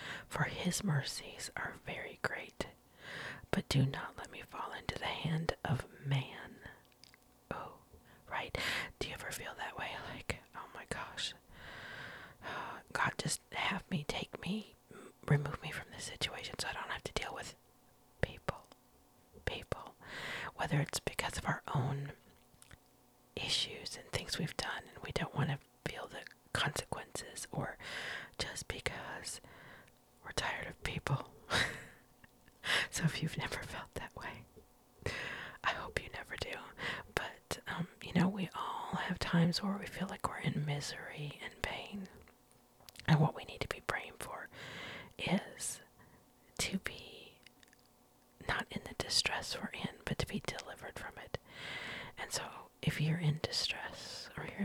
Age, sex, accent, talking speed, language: 40-59, male, American, 145 wpm, English